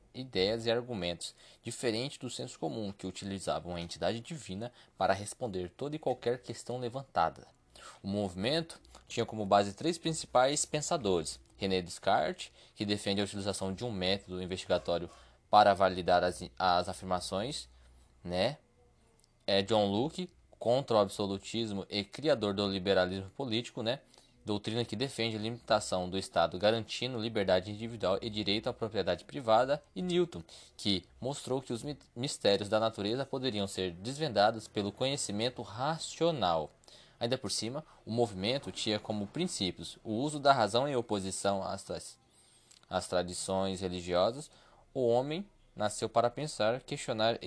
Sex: male